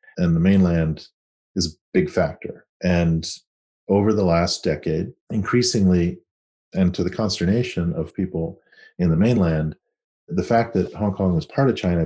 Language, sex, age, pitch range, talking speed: English, male, 40-59, 85-105 Hz, 155 wpm